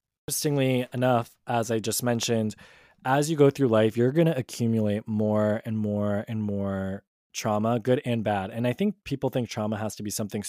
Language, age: English, 20-39